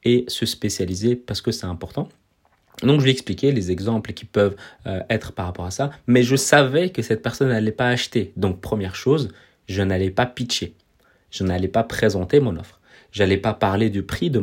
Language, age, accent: French, 30-49, French